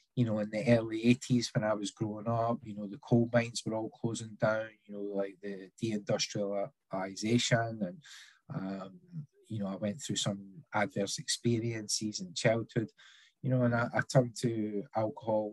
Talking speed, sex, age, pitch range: 175 wpm, male, 20-39, 100-120 Hz